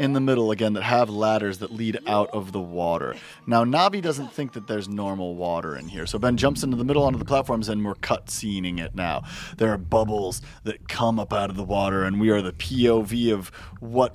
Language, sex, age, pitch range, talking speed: English, male, 30-49, 105-155 Hz, 235 wpm